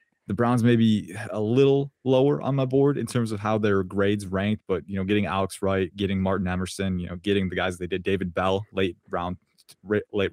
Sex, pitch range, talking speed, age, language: male, 95-110 Hz, 220 wpm, 20-39, English